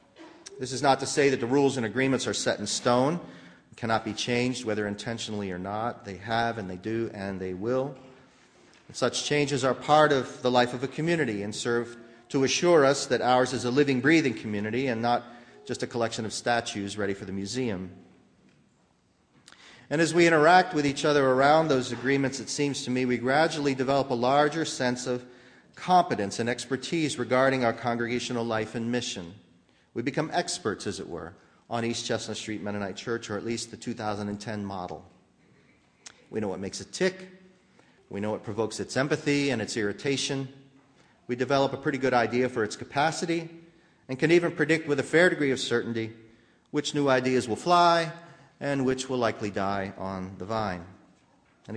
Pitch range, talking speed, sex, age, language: 110-140 Hz, 185 wpm, male, 40-59, English